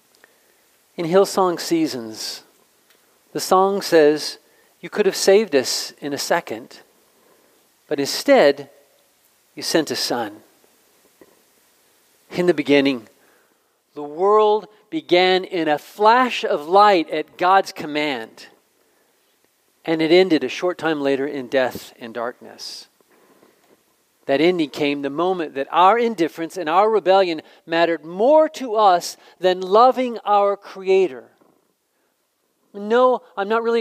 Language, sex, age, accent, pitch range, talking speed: English, male, 40-59, American, 165-235 Hz, 120 wpm